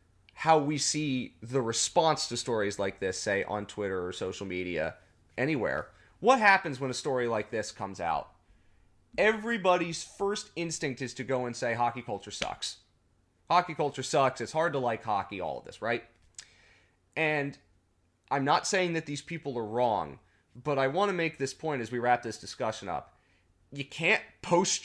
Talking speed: 175 wpm